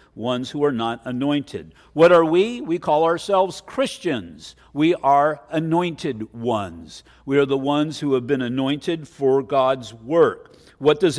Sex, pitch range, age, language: male, 140-175 Hz, 50-69, English